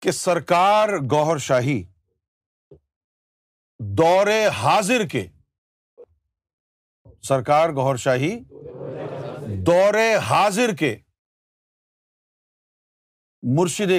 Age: 50-69